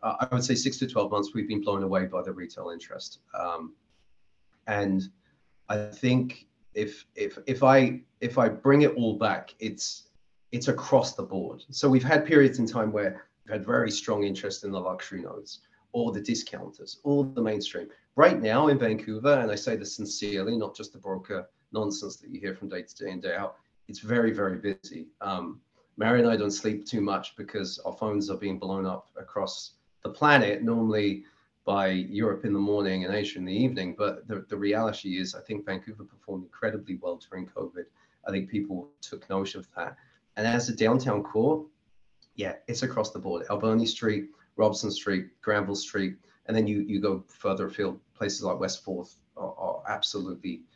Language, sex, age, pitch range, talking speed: English, male, 30-49, 95-115 Hz, 195 wpm